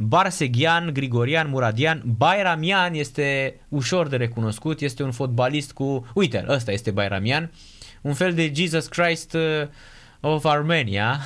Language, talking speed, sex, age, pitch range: Romanian, 125 wpm, male, 20-39, 115-150 Hz